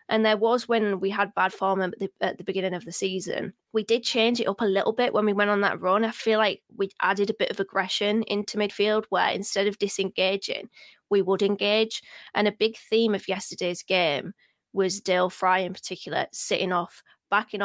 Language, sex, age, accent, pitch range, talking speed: English, female, 20-39, British, 190-215 Hz, 210 wpm